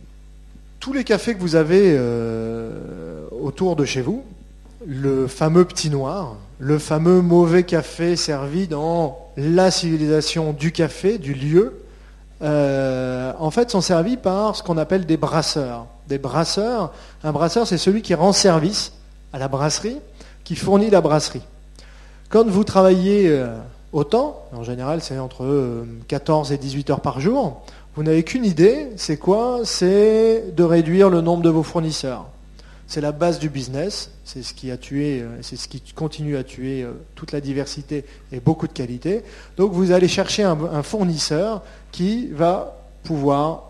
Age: 30-49